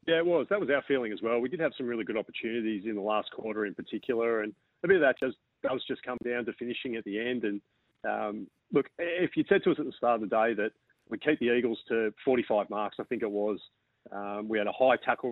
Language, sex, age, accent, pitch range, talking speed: English, male, 30-49, Australian, 105-125 Hz, 270 wpm